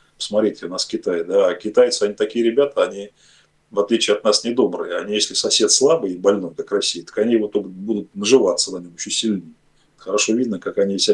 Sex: male